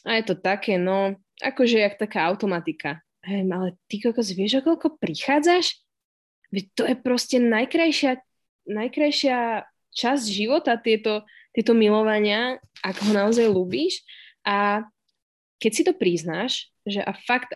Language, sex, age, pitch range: Slovak, female, 20-39, 190-235 Hz